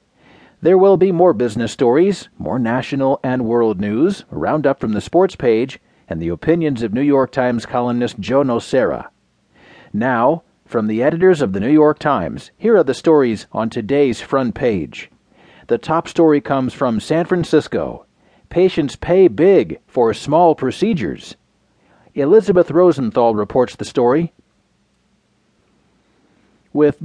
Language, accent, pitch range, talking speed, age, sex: English, American, 120-170 Hz, 140 wpm, 40-59, male